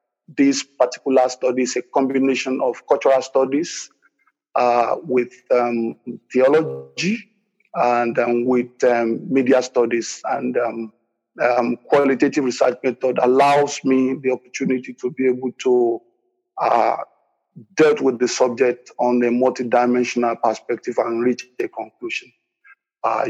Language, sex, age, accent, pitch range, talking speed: English, male, 50-69, Nigerian, 125-145 Hz, 125 wpm